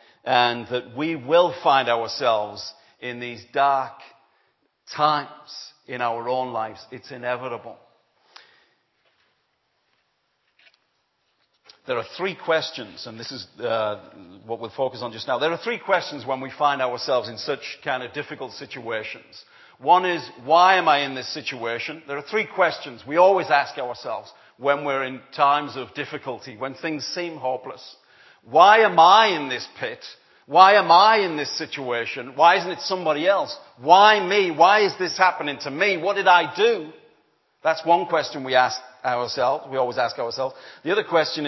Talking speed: 160 wpm